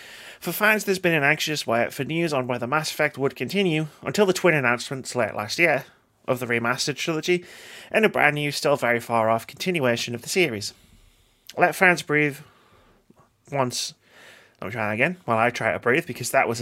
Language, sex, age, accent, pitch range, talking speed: English, male, 30-49, British, 120-165 Hz, 190 wpm